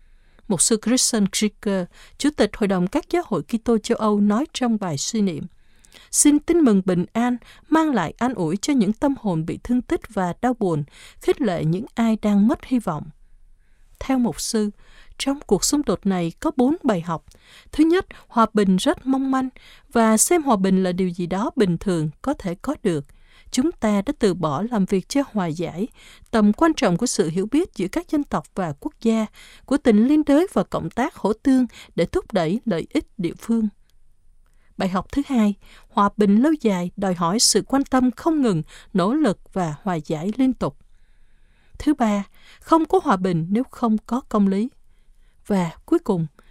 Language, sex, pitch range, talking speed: Vietnamese, female, 190-260 Hz, 200 wpm